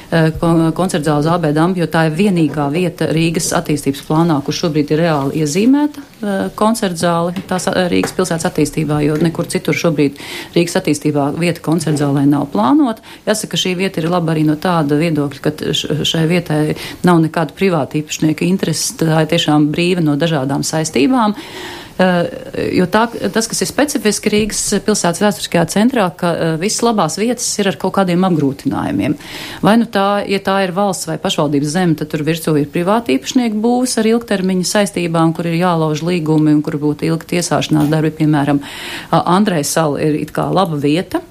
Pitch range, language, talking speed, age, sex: 155-195 Hz, Russian, 150 wpm, 40-59, female